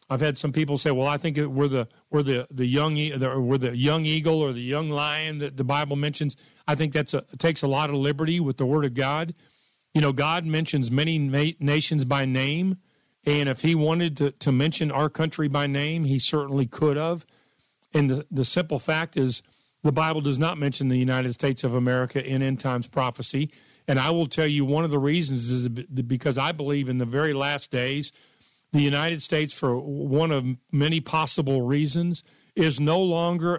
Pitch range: 135-160 Hz